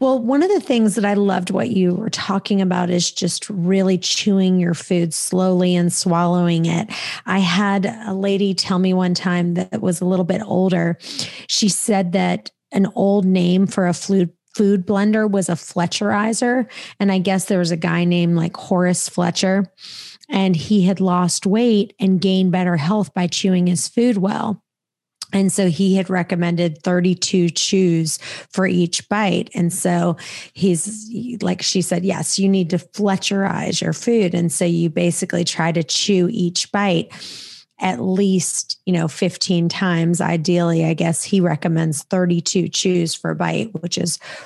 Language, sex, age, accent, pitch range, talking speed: English, female, 30-49, American, 175-195 Hz, 170 wpm